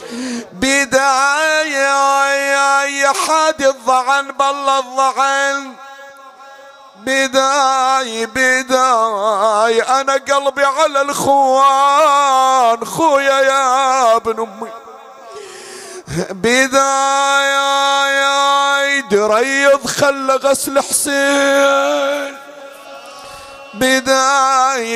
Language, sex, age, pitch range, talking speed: Arabic, male, 50-69, 230-275 Hz, 55 wpm